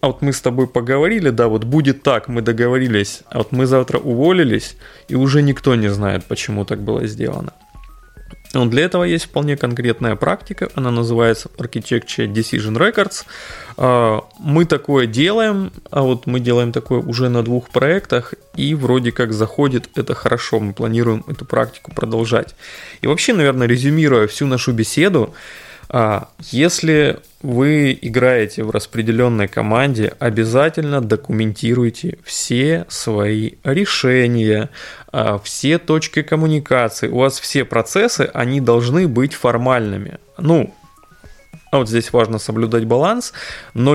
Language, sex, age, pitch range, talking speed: Russian, male, 20-39, 115-145 Hz, 130 wpm